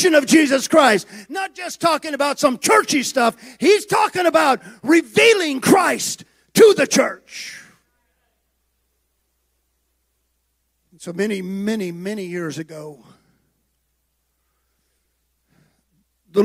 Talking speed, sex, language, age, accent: 90 wpm, male, English, 50-69, American